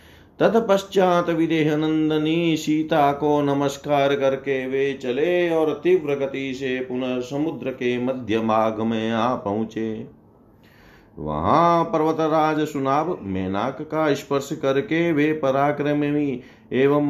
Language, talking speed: Hindi, 100 wpm